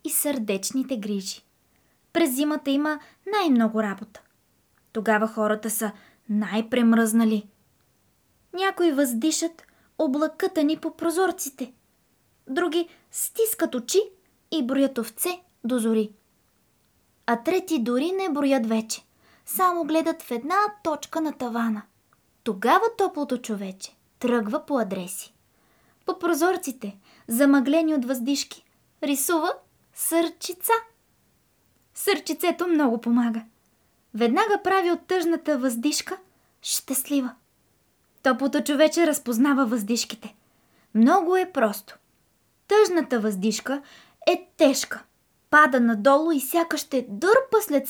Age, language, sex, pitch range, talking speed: 20-39, Bulgarian, female, 230-330 Hz, 100 wpm